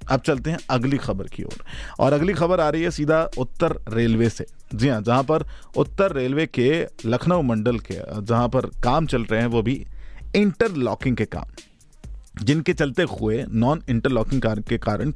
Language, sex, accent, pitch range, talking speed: Hindi, male, native, 115-155 Hz, 185 wpm